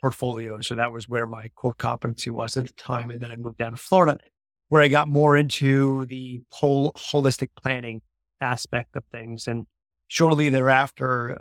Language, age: English, 30-49